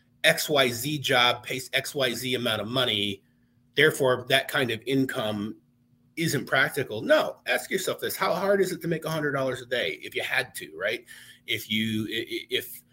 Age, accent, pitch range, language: 30-49, American, 115-155 Hz, English